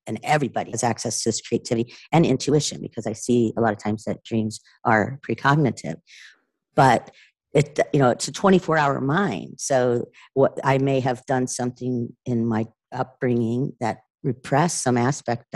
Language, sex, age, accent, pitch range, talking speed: English, female, 50-69, American, 115-135 Hz, 165 wpm